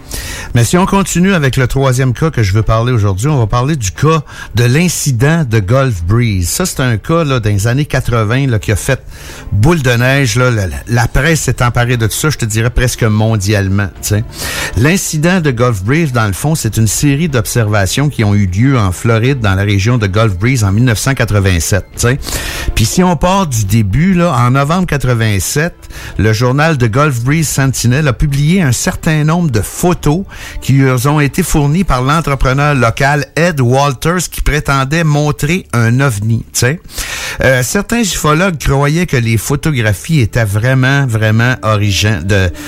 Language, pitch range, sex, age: French, 110-145 Hz, male, 60-79